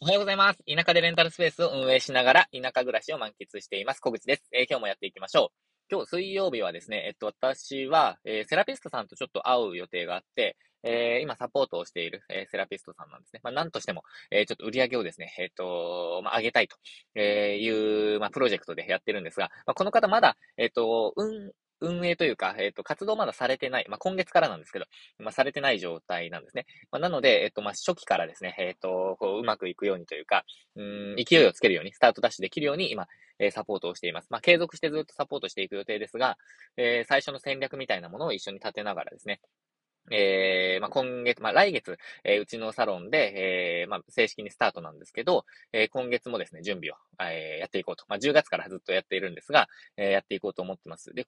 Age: 20-39